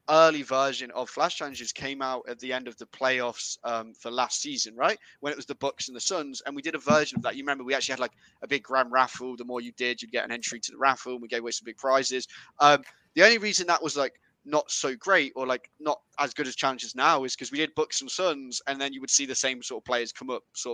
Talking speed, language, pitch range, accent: 285 wpm, English, 125-155 Hz, British